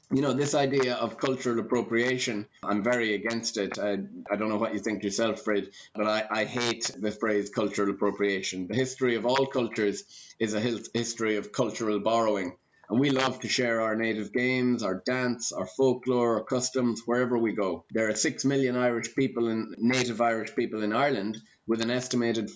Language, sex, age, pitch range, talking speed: English, male, 30-49, 105-125 Hz, 190 wpm